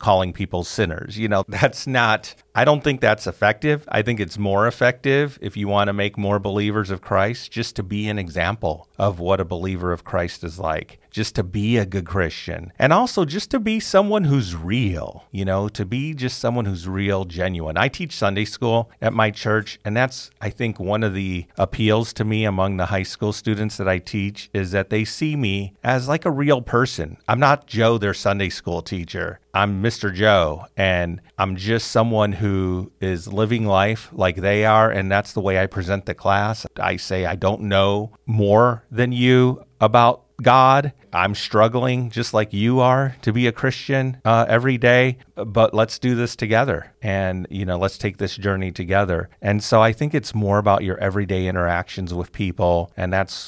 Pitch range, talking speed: 95-120 Hz, 200 wpm